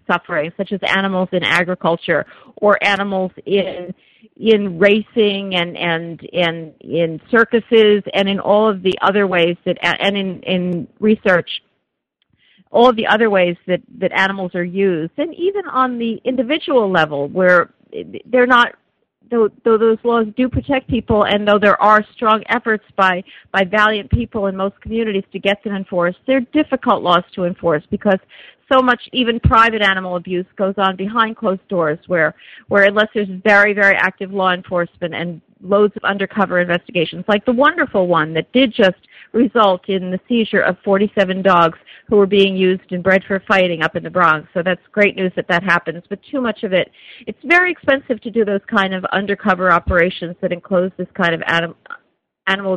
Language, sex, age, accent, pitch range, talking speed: English, female, 50-69, American, 185-230 Hz, 175 wpm